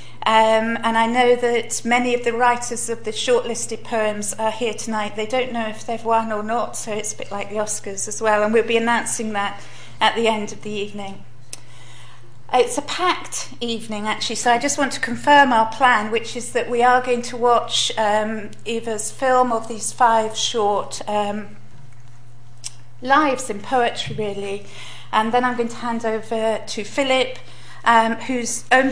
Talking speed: 185 wpm